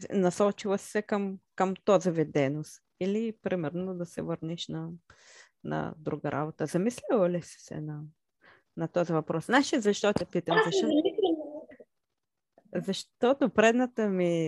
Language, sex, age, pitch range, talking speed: Bulgarian, female, 20-39, 165-220 Hz, 130 wpm